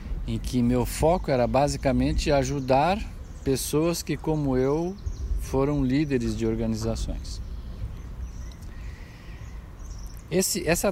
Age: 50-69